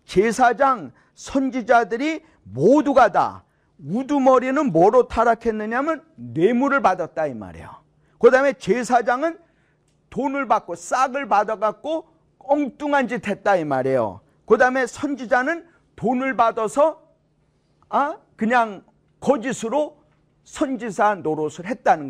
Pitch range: 205-275 Hz